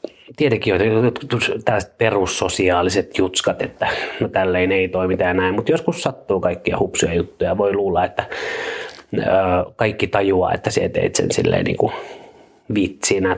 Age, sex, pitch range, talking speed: 30-49, male, 90-125 Hz, 125 wpm